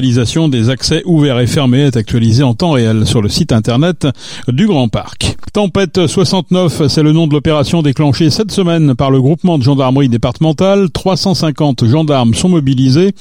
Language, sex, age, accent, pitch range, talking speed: French, male, 40-59, French, 120-160 Hz, 170 wpm